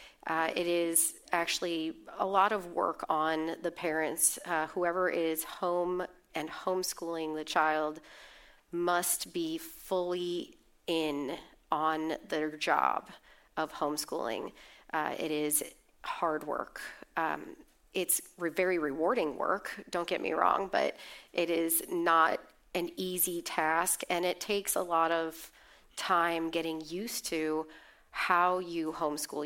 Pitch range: 155-175 Hz